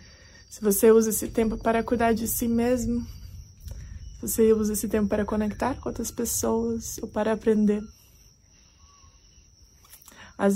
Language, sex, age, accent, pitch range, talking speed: Portuguese, female, 20-39, Brazilian, 210-265 Hz, 135 wpm